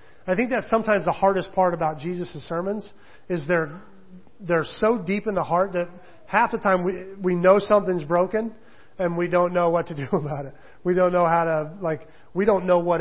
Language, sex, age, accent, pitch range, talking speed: English, male, 40-59, American, 155-185 Hz, 210 wpm